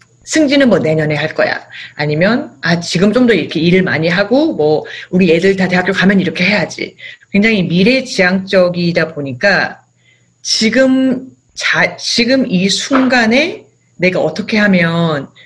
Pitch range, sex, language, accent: 160-235 Hz, female, Korean, native